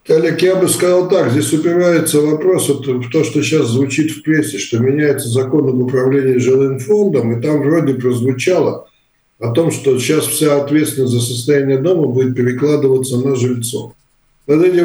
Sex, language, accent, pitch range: male, Russian, native, 135-165 Hz